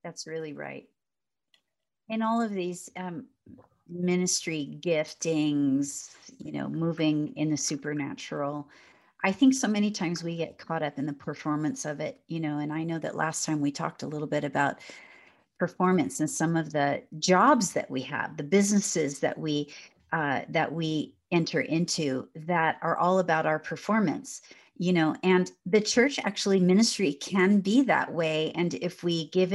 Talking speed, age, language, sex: 170 wpm, 40-59, English, female